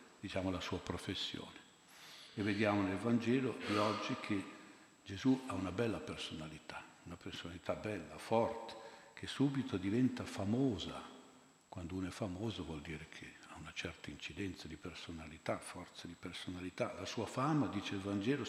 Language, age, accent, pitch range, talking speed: Italian, 50-69, native, 90-115 Hz, 150 wpm